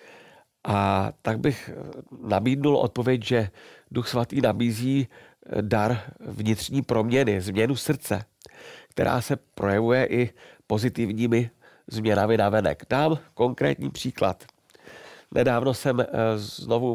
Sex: male